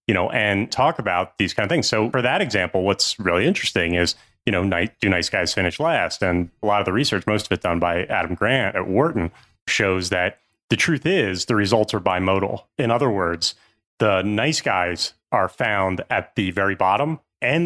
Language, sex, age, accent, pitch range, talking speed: English, male, 30-49, American, 90-120 Hz, 210 wpm